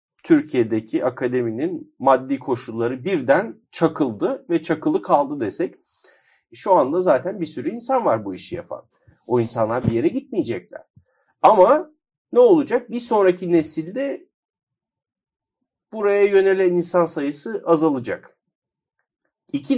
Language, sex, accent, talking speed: Turkish, male, native, 110 wpm